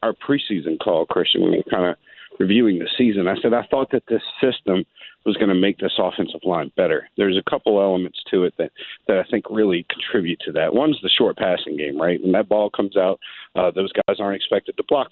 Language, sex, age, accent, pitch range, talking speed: English, male, 50-69, American, 100-120 Hz, 235 wpm